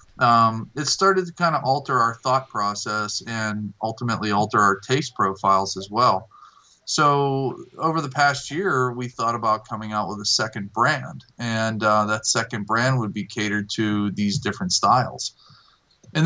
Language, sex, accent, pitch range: English, male, American, 105-135 Hz